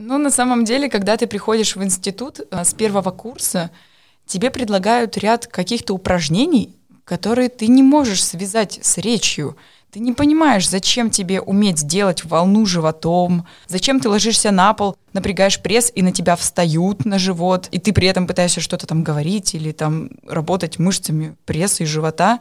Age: 20-39